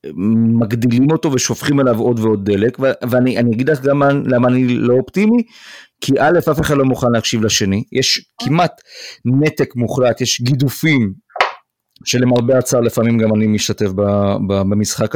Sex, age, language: male, 40-59, Hebrew